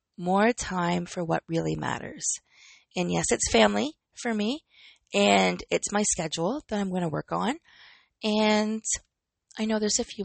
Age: 20-39